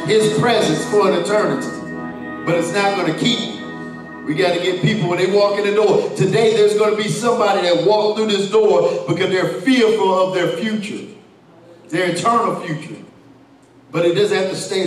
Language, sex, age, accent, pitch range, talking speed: English, male, 50-69, American, 140-205 Hz, 185 wpm